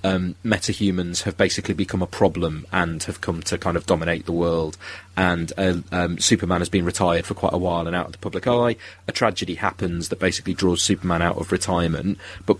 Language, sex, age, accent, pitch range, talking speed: English, male, 30-49, British, 90-100 Hz, 210 wpm